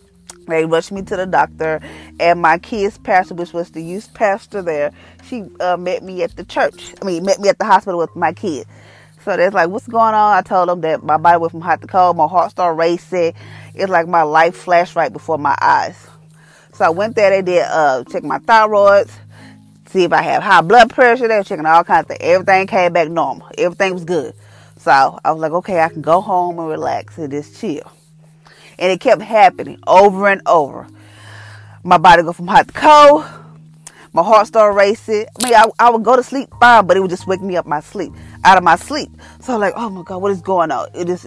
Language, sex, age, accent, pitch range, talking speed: English, female, 20-39, American, 160-200 Hz, 235 wpm